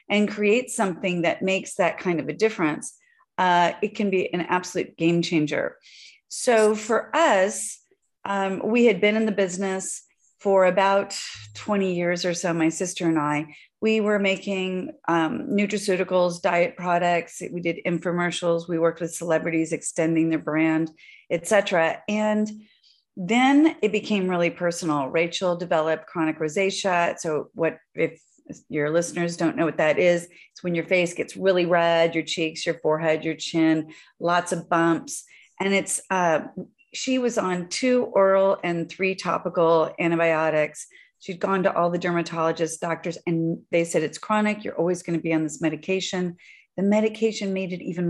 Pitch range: 165-195 Hz